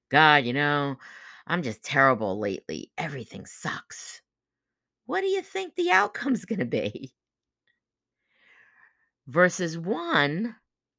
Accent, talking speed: American, 110 wpm